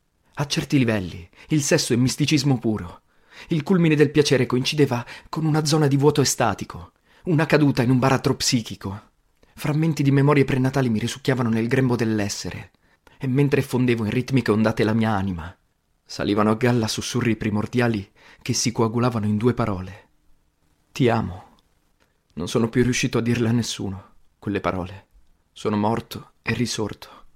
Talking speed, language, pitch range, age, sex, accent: 155 wpm, Italian, 105-140 Hz, 30-49, male, native